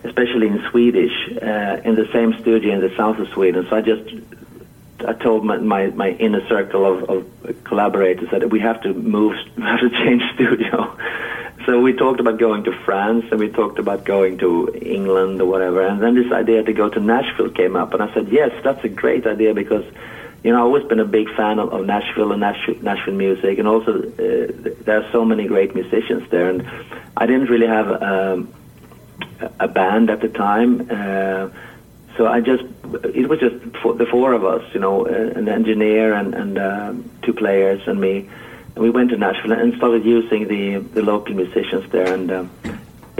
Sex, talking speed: male, 195 wpm